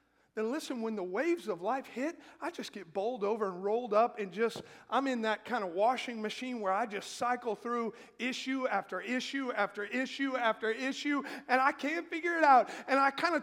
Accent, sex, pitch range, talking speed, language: American, male, 215-295 Hz, 220 wpm, English